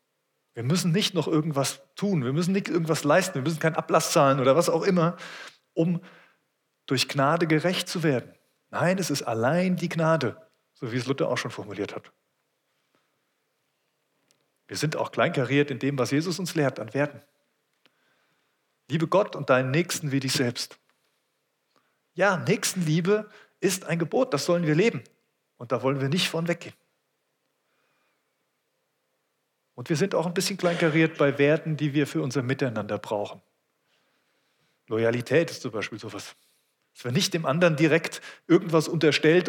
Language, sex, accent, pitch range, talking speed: German, male, German, 140-185 Hz, 160 wpm